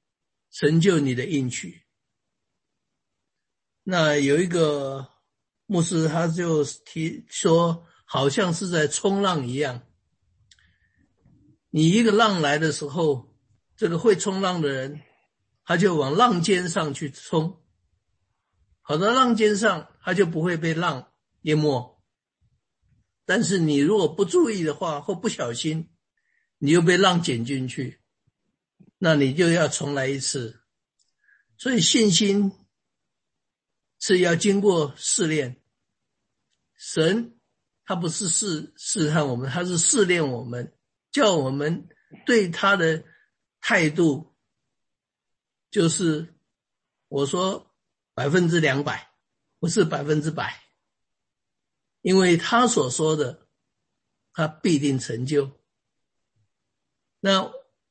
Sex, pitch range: male, 140-190 Hz